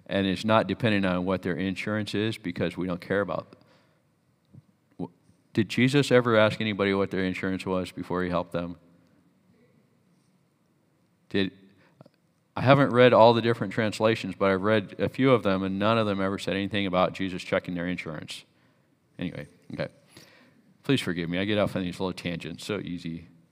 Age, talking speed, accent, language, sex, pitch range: 40-59, 175 wpm, American, English, male, 95-125 Hz